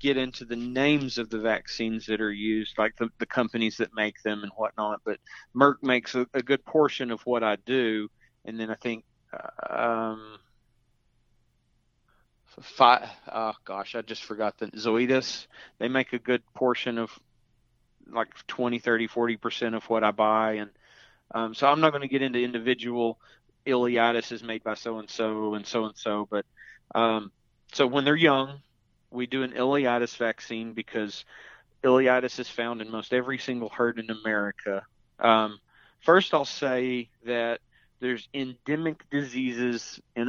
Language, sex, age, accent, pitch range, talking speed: English, male, 30-49, American, 110-125 Hz, 160 wpm